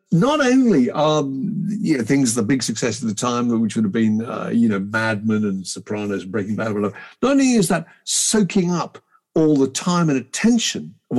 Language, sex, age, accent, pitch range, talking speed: English, male, 50-69, British, 135-225 Hz, 210 wpm